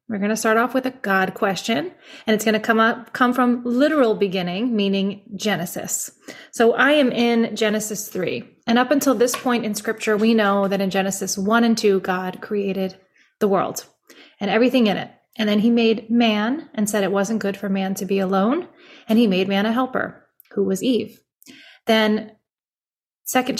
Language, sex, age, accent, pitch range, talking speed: English, female, 30-49, American, 200-235 Hz, 195 wpm